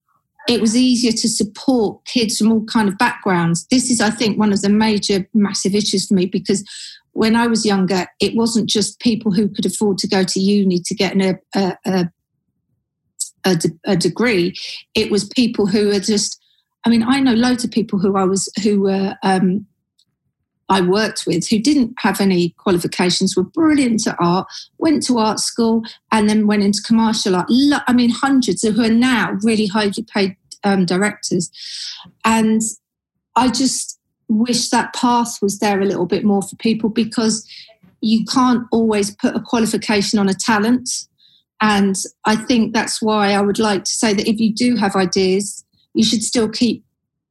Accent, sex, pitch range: British, female, 195-230 Hz